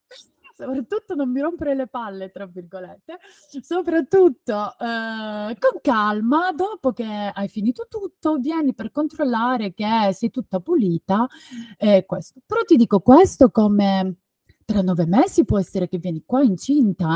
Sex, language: female, Italian